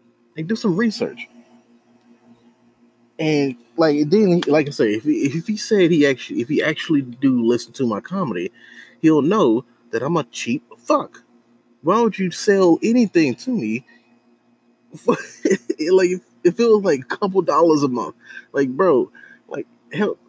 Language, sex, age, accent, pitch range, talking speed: English, male, 20-39, American, 120-165 Hz, 160 wpm